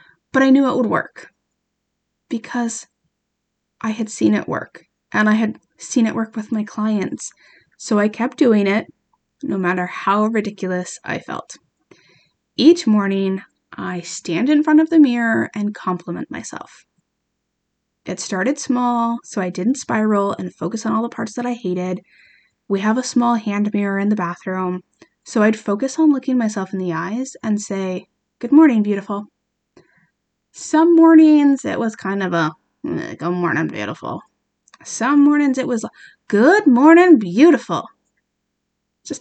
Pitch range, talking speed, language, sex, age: 200-270 Hz, 160 wpm, English, female, 20-39